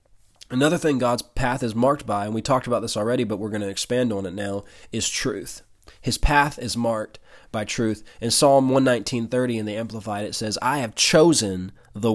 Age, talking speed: 20-39, 200 wpm